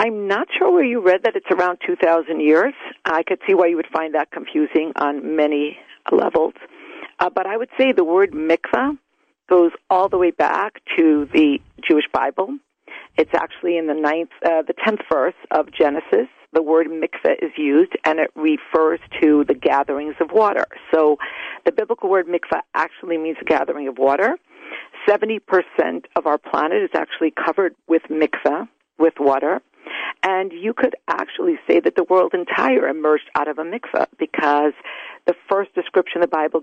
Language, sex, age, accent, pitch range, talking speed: English, female, 50-69, American, 155-200 Hz, 175 wpm